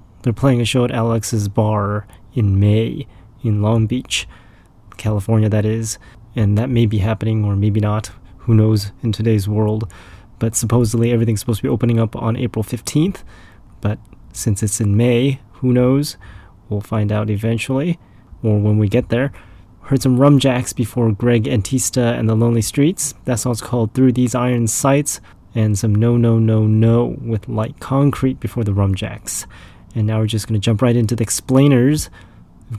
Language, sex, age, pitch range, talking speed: English, male, 20-39, 105-120 Hz, 175 wpm